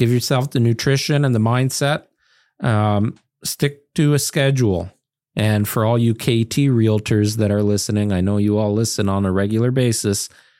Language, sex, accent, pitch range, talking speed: English, male, American, 100-140 Hz, 170 wpm